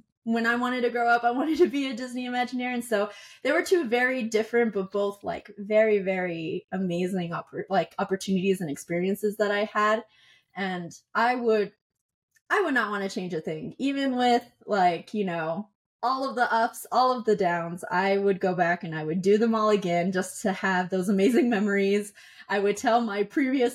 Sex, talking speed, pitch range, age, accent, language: female, 200 wpm, 190-250 Hz, 20-39, American, English